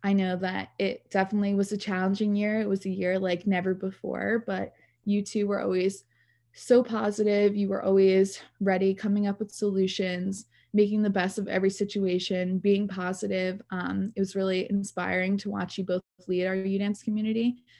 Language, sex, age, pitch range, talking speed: English, female, 20-39, 185-210 Hz, 175 wpm